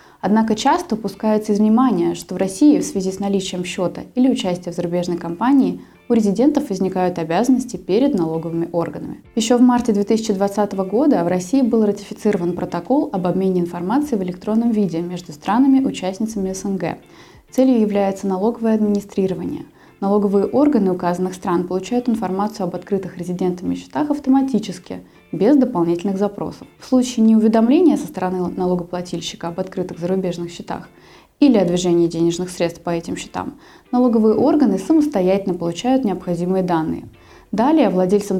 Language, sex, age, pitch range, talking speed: Russian, female, 20-39, 180-245 Hz, 140 wpm